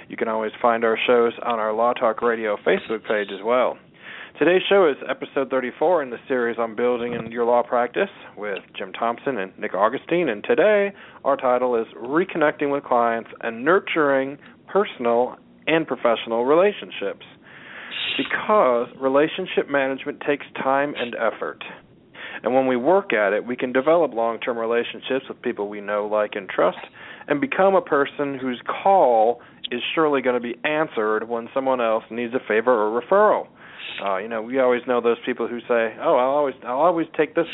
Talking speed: 180 wpm